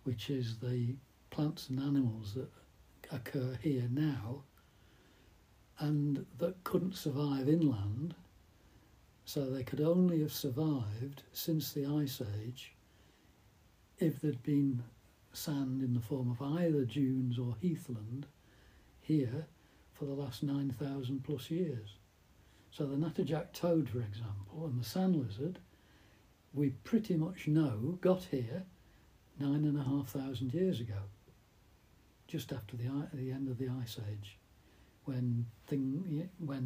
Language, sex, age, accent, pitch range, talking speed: English, male, 60-79, British, 110-145 Hz, 125 wpm